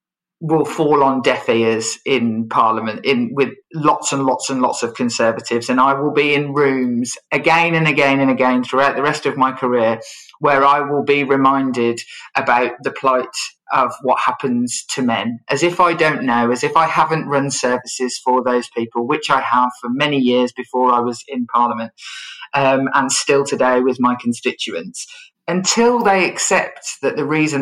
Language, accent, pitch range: English, British, 125-145 Hz